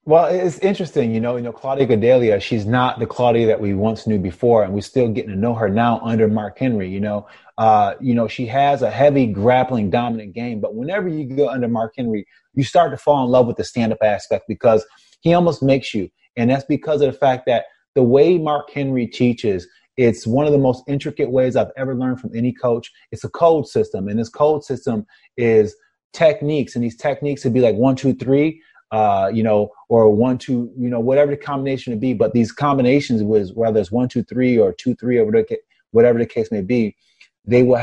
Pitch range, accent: 115-145 Hz, American